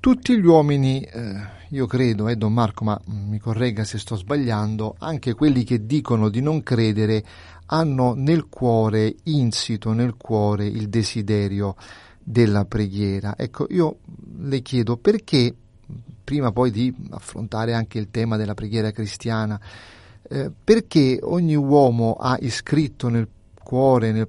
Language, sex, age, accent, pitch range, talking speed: Italian, male, 30-49, native, 105-125 Hz, 130 wpm